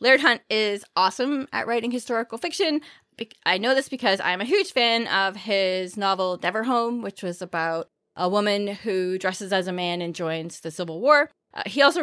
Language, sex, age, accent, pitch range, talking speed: English, female, 20-39, American, 185-235 Hz, 190 wpm